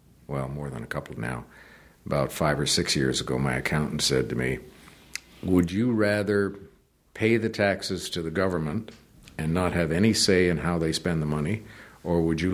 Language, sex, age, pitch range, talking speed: English, male, 50-69, 75-95 Hz, 190 wpm